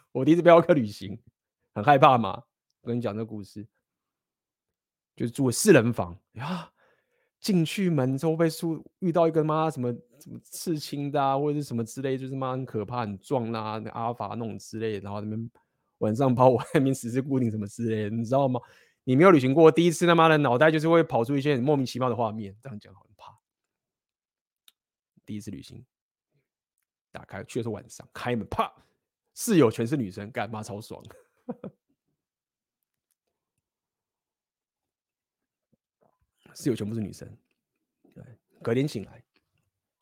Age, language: 20-39, Chinese